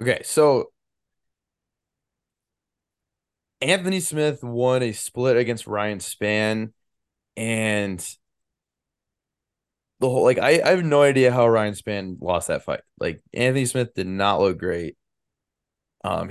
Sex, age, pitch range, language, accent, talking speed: male, 20-39, 100-135 Hz, English, American, 120 wpm